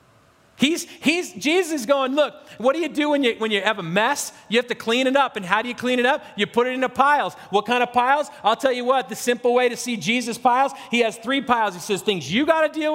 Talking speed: 285 wpm